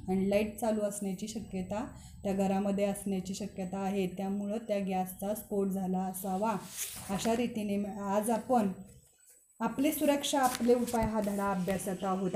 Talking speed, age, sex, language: 135 wpm, 30-49, female, Marathi